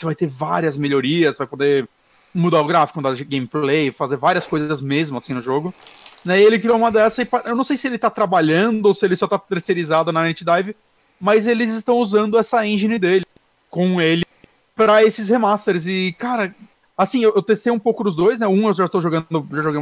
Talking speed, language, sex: 215 wpm, Portuguese, male